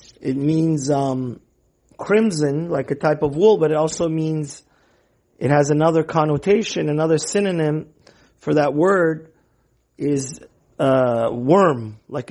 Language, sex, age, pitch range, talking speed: English, male, 50-69, 135-165 Hz, 125 wpm